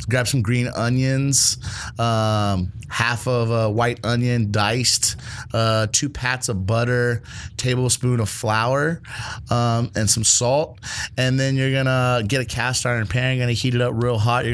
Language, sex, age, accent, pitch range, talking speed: English, male, 30-49, American, 110-125 Hz, 175 wpm